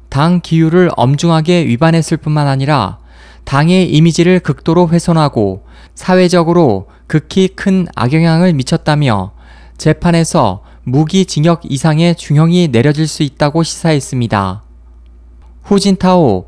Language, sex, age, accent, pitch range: Korean, male, 20-39, native, 125-170 Hz